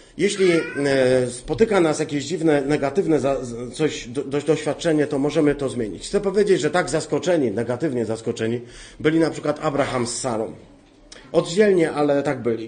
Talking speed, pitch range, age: 135 wpm, 130-160 Hz, 40-59